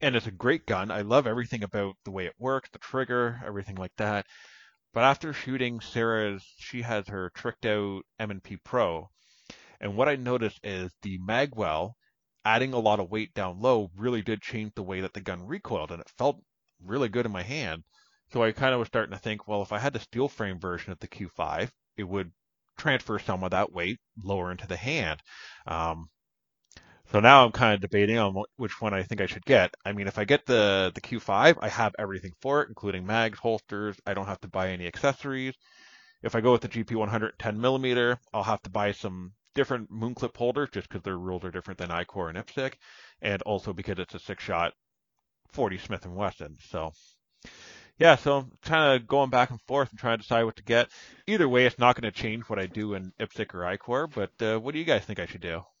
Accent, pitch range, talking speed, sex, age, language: American, 100-125 Hz, 220 wpm, male, 30-49, English